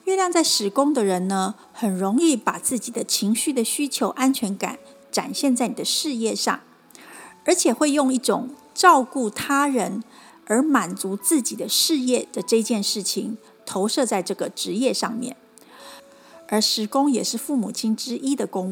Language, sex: Chinese, female